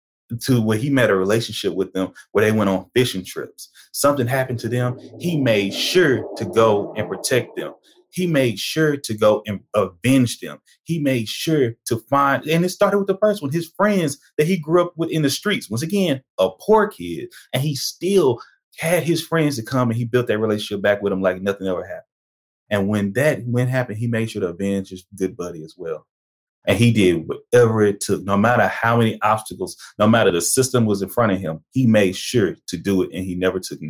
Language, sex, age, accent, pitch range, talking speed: English, male, 30-49, American, 100-140 Hz, 225 wpm